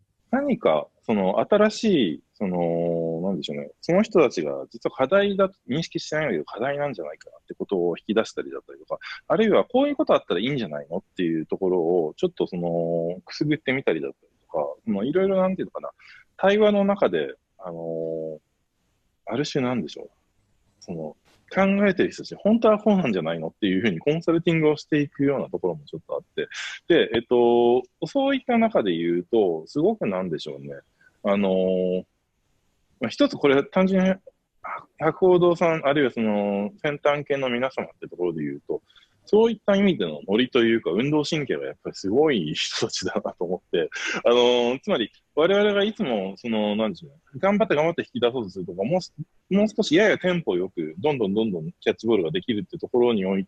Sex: male